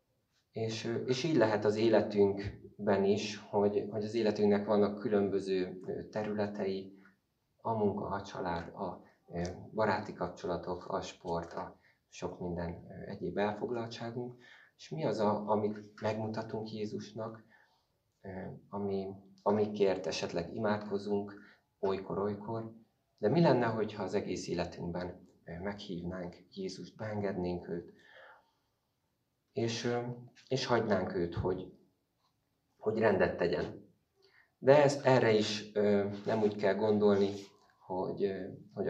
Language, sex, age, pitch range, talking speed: Hungarian, male, 30-49, 95-110 Hz, 105 wpm